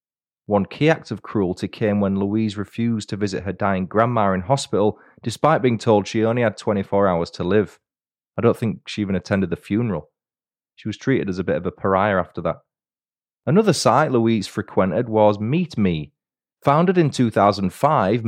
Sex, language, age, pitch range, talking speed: male, English, 30-49, 100-130 Hz, 180 wpm